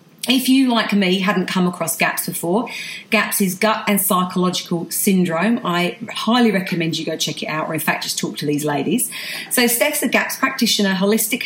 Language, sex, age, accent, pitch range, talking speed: English, female, 40-59, British, 190-230 Hz, 195 wpm